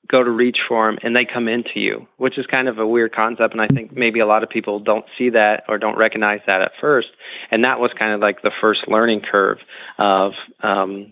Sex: male